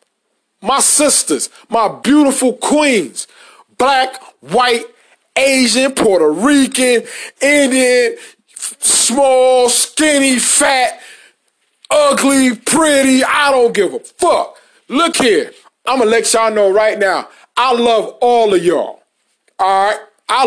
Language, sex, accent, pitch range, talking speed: English, male, American, 215-285 Hz, 115 wpm